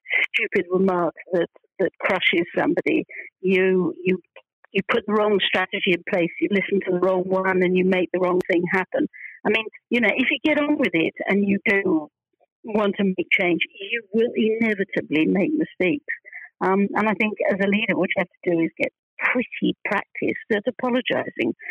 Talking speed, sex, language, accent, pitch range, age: 190 wpm, female, English, British, 200-290 Hz, 60-79